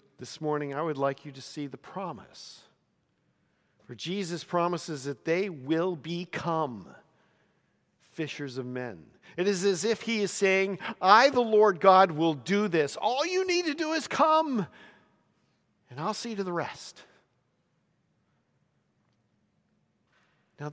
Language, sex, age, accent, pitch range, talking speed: English, male, 50-69, American, 145-200 Hz, 140 wpm